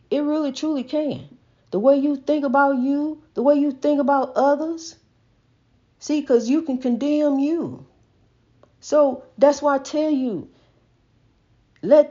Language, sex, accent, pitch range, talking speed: English, female, American, 185-280 Hz, 145 wpm